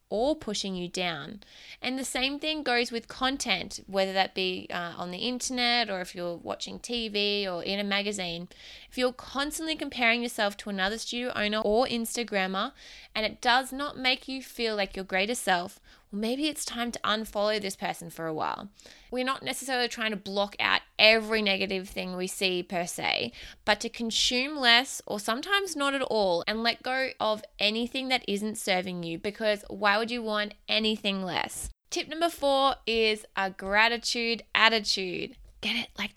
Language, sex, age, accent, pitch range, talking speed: English, female, 20-39, Australian, 195-245 Hz, 180 wpm